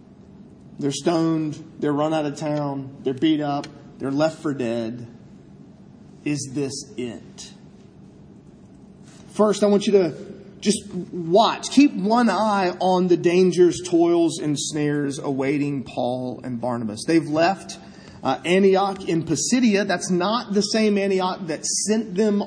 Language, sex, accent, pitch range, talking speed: English, male, American, 145-190 Hz, 135 wpm